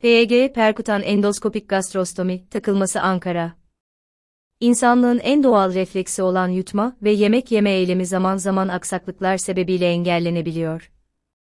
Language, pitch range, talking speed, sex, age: Turkish, 185-210 Hz, 110 wpm, female, 30-49